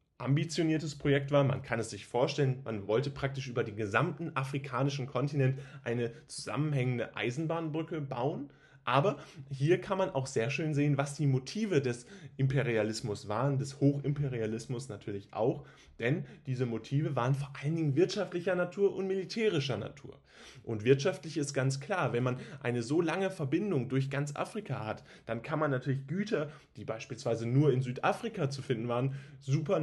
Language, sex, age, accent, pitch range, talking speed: German, male, 10-29, German, 125-150 Hz, 160 wpm